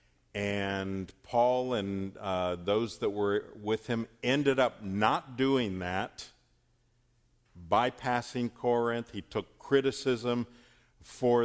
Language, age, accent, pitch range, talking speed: English, 50-69, American, 90-115 Hz, 105 wpm